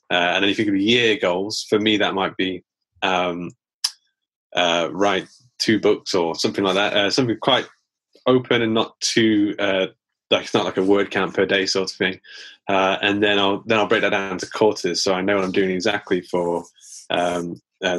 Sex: male